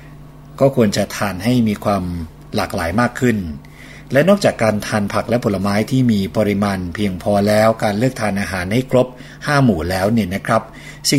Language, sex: Thai, male